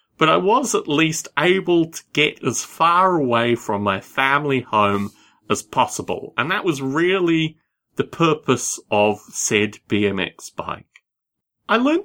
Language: English